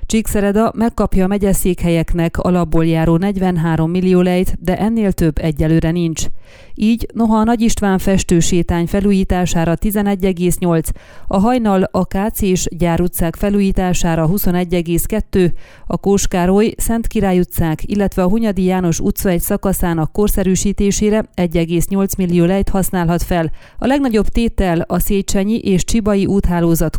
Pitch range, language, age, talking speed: 175-205 Hz, Hungarian, 30-49, 125 wpm